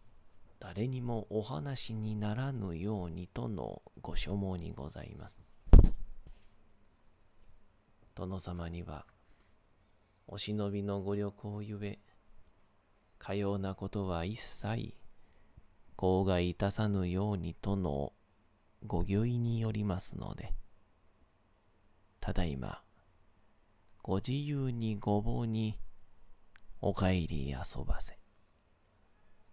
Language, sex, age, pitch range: Japanese, male, 40-59, 95-110 Hz